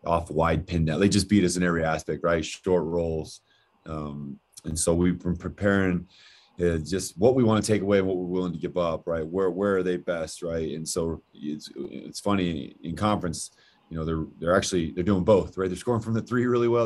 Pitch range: 80-95 Hz